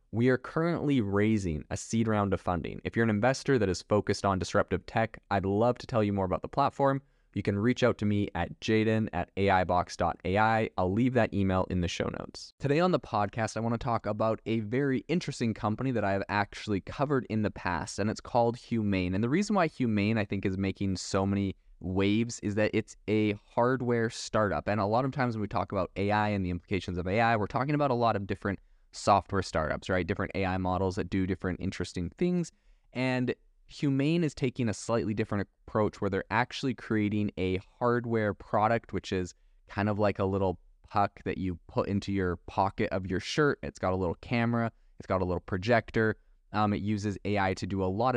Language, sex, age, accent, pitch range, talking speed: English, male, 20-39, American, 95-115 Hz, 215 wpm